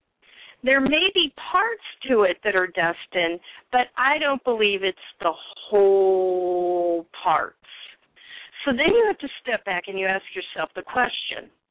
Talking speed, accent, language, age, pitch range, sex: 155 wpm, American, English, 40-59, 200-275 Hz, female